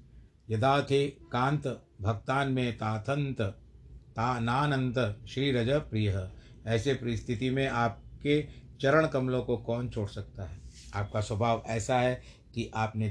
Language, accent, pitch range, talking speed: Hindi, native, 100-120 Hz, 115 wpm